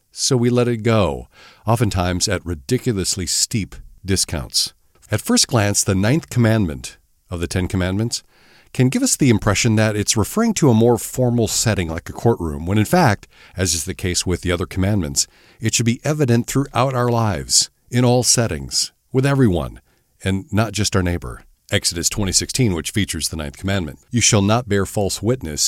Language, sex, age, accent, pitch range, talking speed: English, male, 50-69, American, 90-120 Hz, 180 wpm